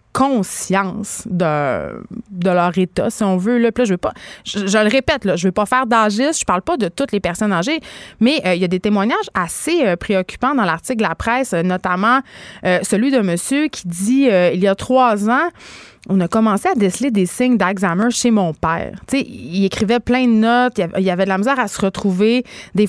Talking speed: 235 wpm